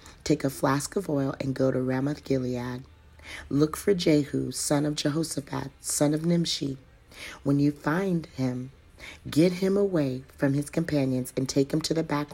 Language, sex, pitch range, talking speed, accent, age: English, female, 135-160 Hz, 170 wpm, American, 40-59